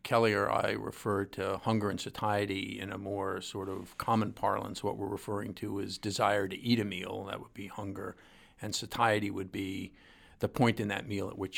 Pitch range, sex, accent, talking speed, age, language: 100-110 Hz, male, American, 205 wpm, 50-69, English